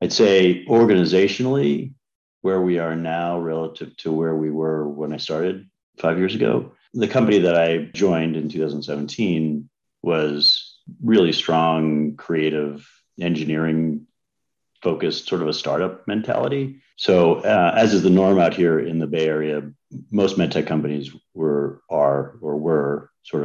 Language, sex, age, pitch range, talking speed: English, male, 40-59, 75-80 Hz, 145 wpm